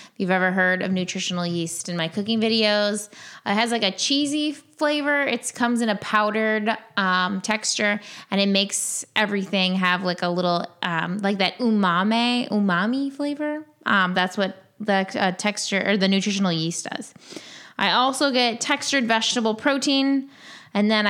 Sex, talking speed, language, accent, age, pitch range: female, 160 wpm, English, American, 20-39, 185-235 Hz